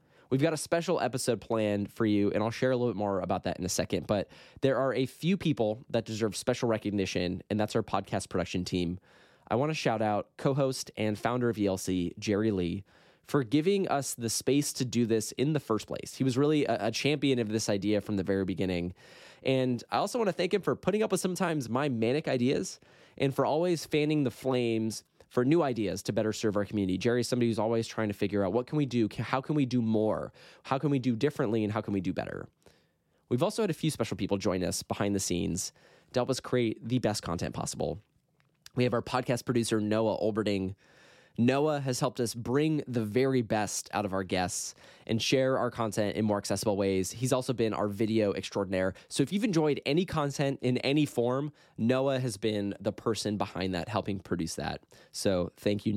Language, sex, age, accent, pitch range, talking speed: English, male, 20-39, American, 100-130 Hz, 220 wpm